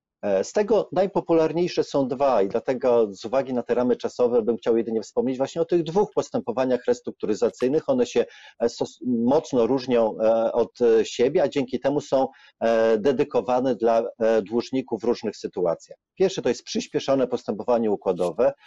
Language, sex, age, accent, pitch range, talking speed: Polish, male, 40-59, native, 110-155 Hz, 145 wpm